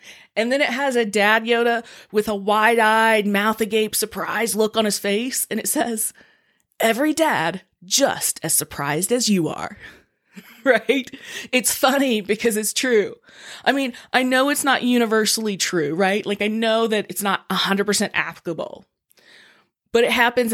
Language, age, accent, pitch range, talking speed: English, 20-39, American, 195-245 Hz, 155 wpm